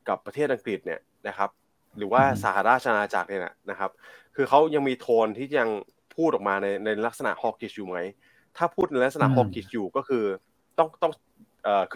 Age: 20-39